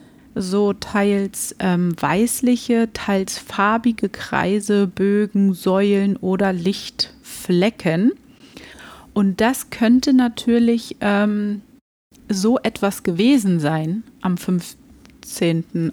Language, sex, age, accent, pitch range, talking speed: German, female, 30-49, German, 180-225 Hz, 85 wpm